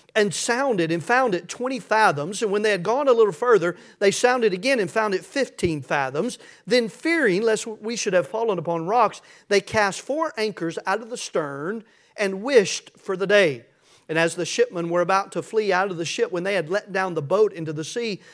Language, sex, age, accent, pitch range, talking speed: English, male, 40-59, American, 155-205 Hz, 220 wpm